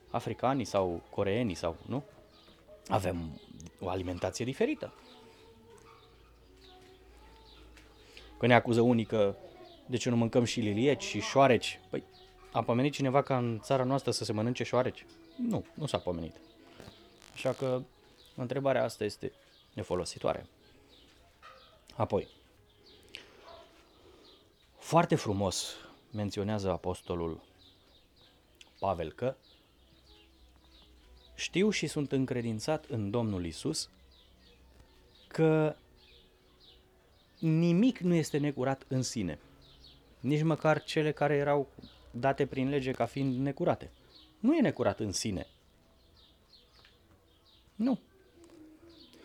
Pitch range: 95-150 Hz